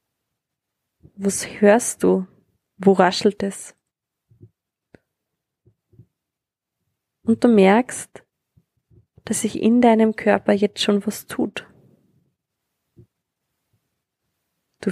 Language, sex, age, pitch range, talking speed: German, female, 20-39, 195-220 Hz, 75 wpm